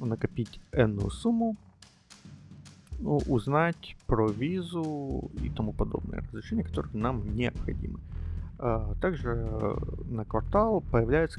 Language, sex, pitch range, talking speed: Russian, male, 105-140 Hz, 100 wpm